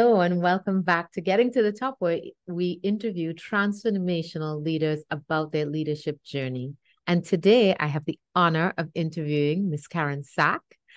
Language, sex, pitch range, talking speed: English, female, 150-180 Hz, 160 wpm